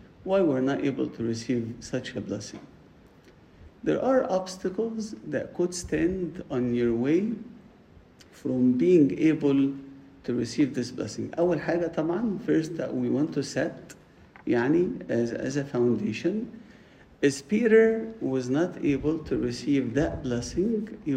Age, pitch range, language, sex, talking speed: 50-69, 125-170 Hz, English, male, 135 wpm